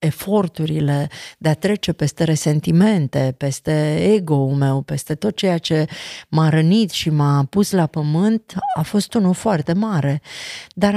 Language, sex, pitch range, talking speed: Romanian, female, 155-200 Hz, 140 wpm